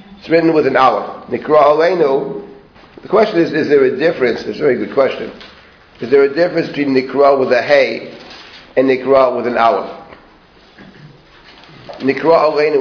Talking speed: 155 wpm